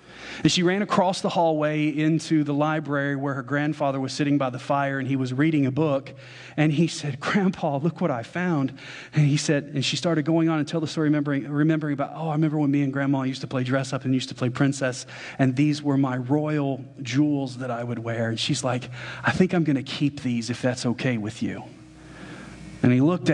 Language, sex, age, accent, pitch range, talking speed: English, male, 40-59, American, 125-155 Hz, 235 wpm